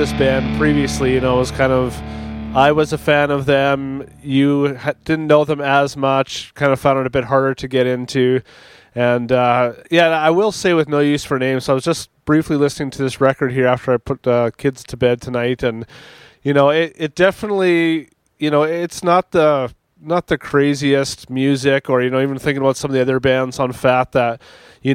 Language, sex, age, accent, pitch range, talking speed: English, male, 20-39, American, 125-145 Hz, 220 wpm